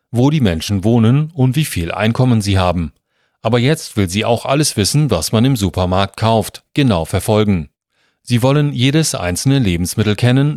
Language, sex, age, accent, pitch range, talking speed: German, male, 40-59, German, 95-130 Hz, 170 wpm